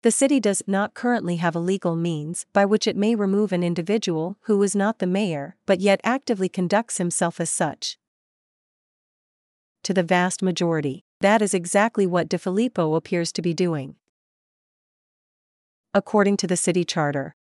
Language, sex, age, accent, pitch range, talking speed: English, female, 40-59, American, 175-205 Hz, 160 wpm